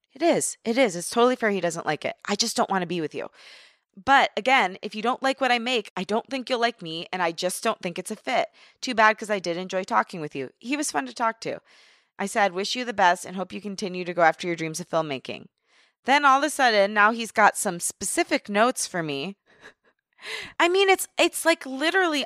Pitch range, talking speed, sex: 175-240 Hz, 250 wpm, female